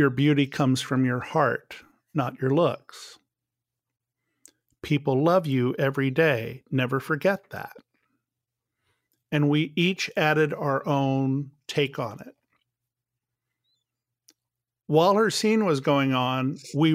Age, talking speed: 50-69, 115 wpm